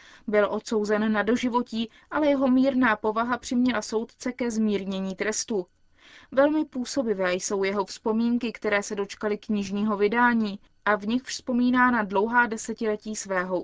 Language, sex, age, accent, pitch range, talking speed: Czech, female, 20-39, native, 210-255 Hz, 135 wpm